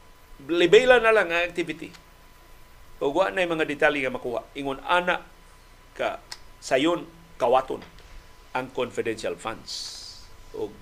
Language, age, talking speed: Filipino, 50-69, 115 wpm